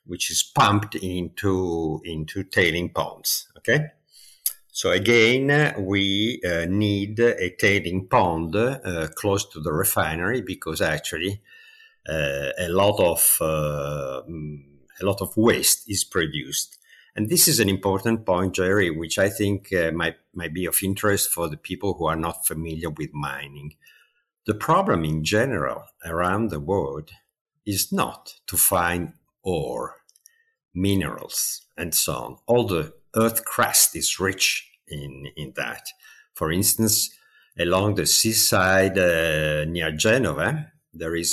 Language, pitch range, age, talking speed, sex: English, 80-115 Hz, 50-69, 135 wpm, male